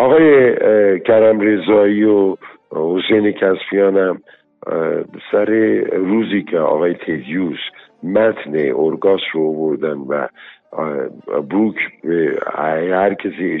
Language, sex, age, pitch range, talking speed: Persian, male, 50-69, 90-135 Hz, 90 wpm